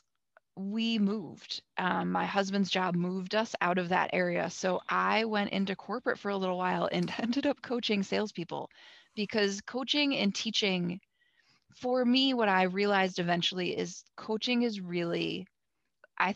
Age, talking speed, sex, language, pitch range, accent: 20-39, 150 wpm, female, English, 175-210 Hz, American